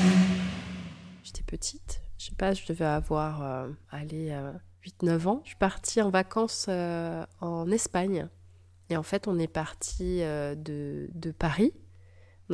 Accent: French